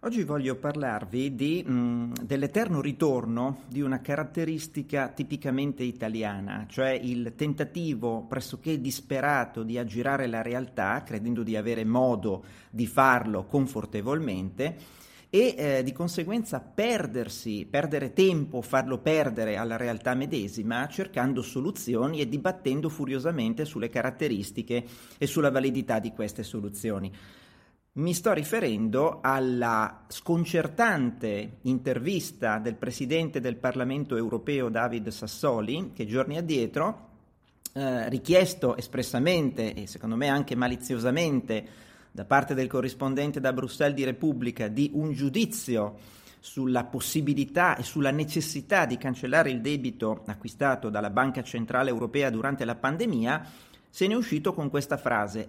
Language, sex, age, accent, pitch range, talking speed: Italian, male, 40-59, native, 120-155 Hz, 120 wpm